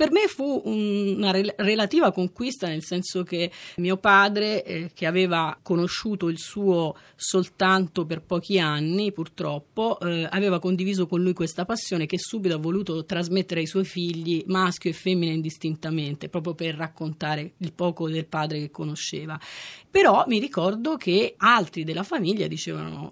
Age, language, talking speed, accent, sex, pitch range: 30-49, Italian, 150 wpm, native, female, 165-195 Hz